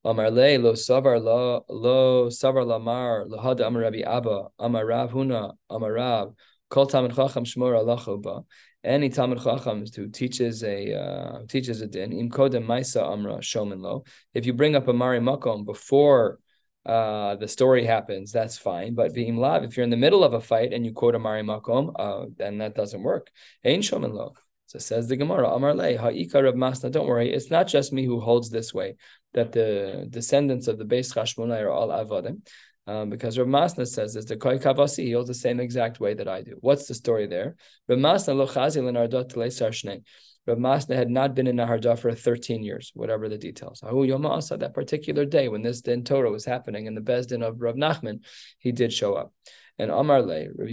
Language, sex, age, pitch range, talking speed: English, male, 20-39, 115-135 Hz, 180 wpm